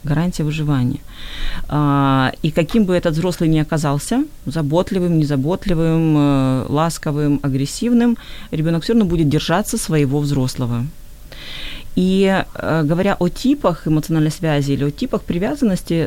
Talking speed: 110 wpm